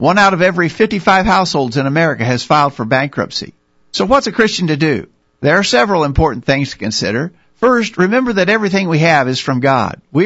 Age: 50-69